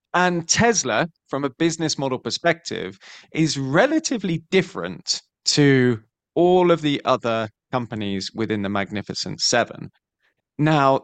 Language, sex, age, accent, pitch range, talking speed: English, male, 20-39, British, 110-155 Hz, 115 wpm